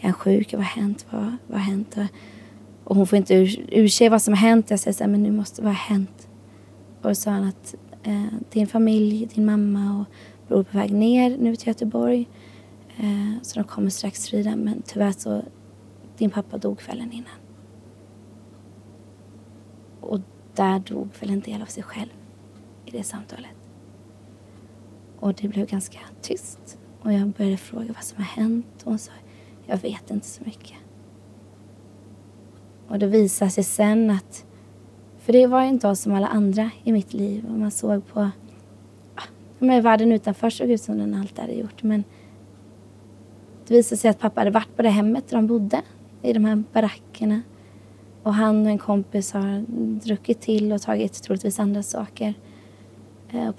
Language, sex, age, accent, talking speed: Swedish, female, 20-39, native, 180 wpm